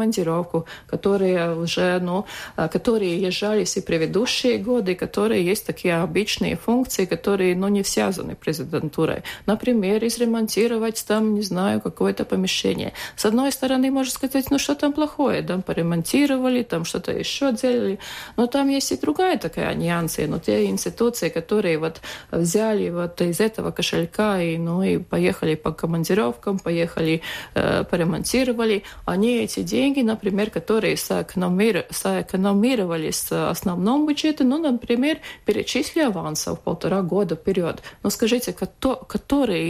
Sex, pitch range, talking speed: female, 175-235 Hz, 135 wpm